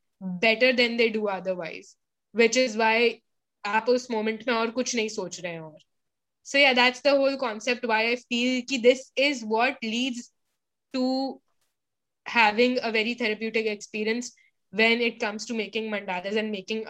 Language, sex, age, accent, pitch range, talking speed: Hindi, female, 20-39, native, 205-250 Hz, 180 wpm